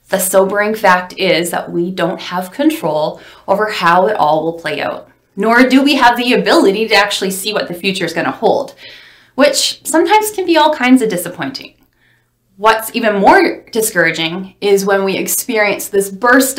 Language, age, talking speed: English, 20-39, 175 wpm